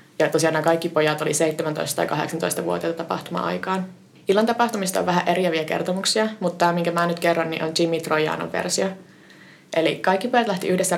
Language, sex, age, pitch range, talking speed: Finnish, female, 20-39, 160-180 Hz, 165 wpm